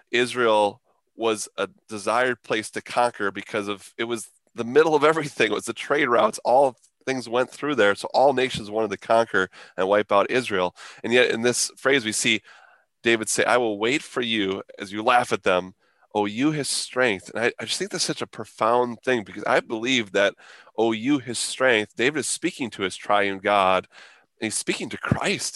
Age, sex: 30-49, male